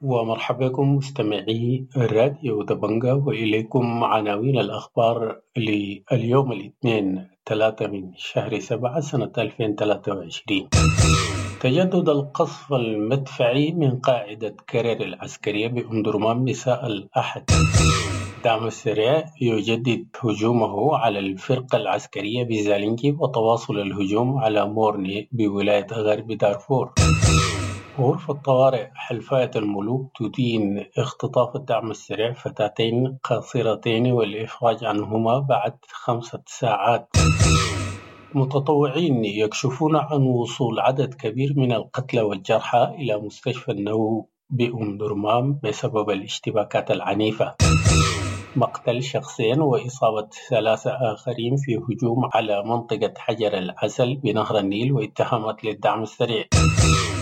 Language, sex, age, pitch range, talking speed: English, male, 50-69, 105-130 Hz, 95 wpm